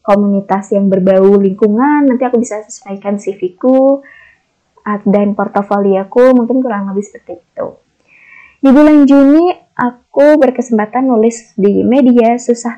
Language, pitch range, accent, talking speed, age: Indonesian, 200-235 Hz, native, 115 wpm, 20-39